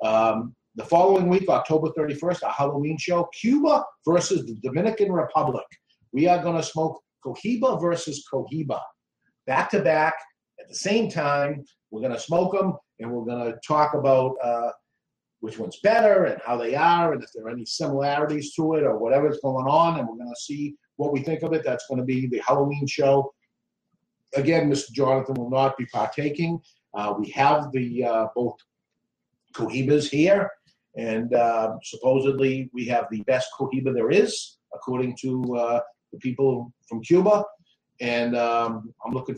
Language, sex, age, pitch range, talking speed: English, male, 50-69, 130-170 Hz, 170 wpm